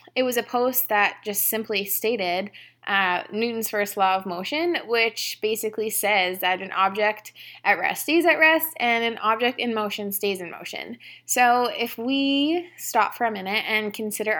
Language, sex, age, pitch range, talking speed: English, female, 20-39, 200-245 Hz, 175 wpm